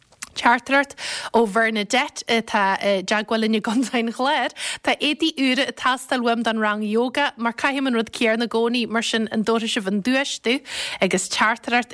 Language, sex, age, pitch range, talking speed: English, female, 30-49, 215-270 Hz, 155 wpm